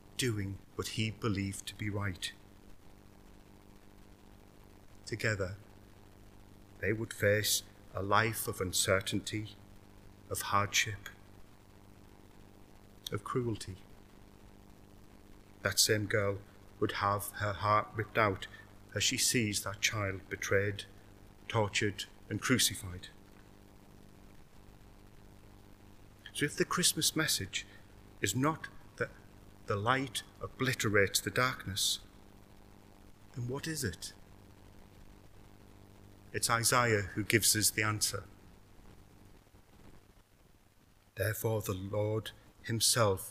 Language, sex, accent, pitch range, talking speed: English, male, British, 100-105 Hz, 90 wpm